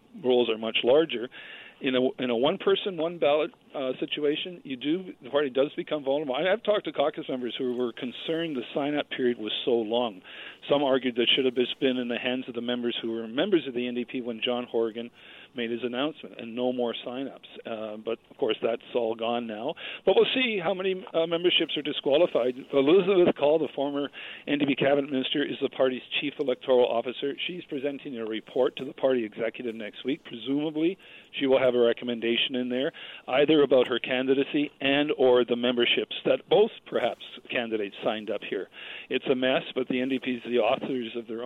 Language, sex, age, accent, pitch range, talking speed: English, male, 50-69, American, 120-145 Hz, 200 wpm